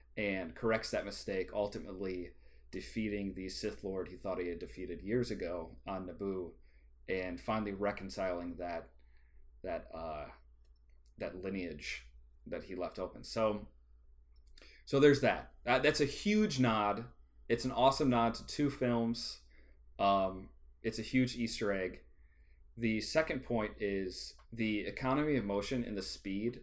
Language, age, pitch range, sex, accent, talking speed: English, 30-49, 90-115 Hz, male, American, 140 wpm